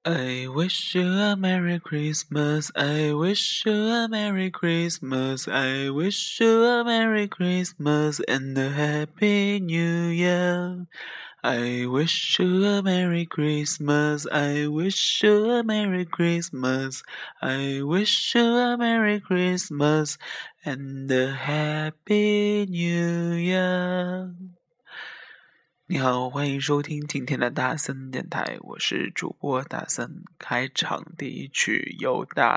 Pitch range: 130-180 Hz